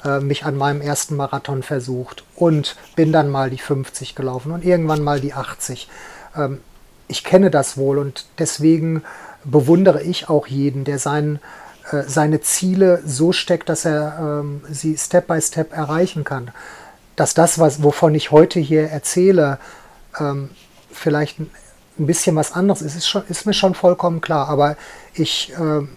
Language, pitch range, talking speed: German, 145-175 Hz, 140 wpm